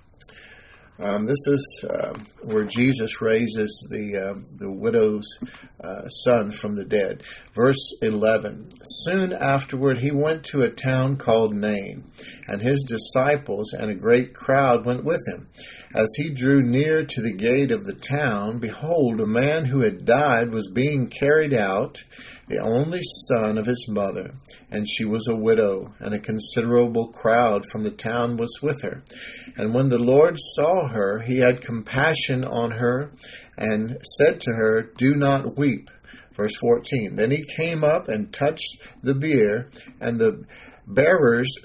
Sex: male